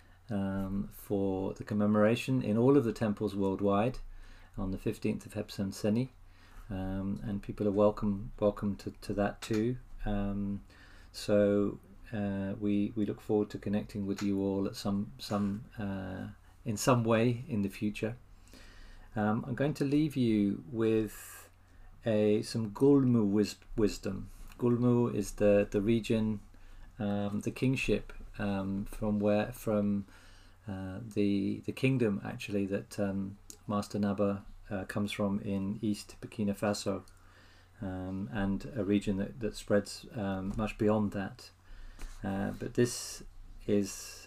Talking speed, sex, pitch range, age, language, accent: 140 wpm, male, 95-110 Hz, 40-59, English, British